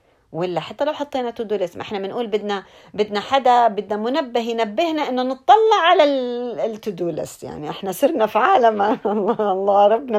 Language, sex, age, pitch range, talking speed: Arabic, female, 40-59, 185-255 Hz, 155 wpm